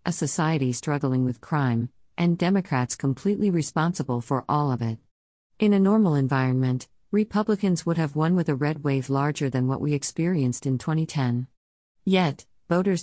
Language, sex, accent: English, female, American